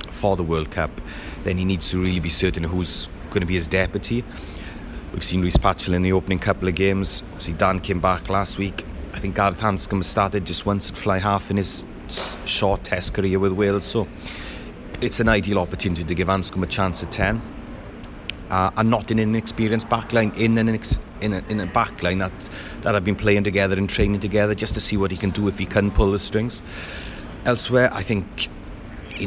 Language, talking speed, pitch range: English, 210 wpm, 95-110 Hz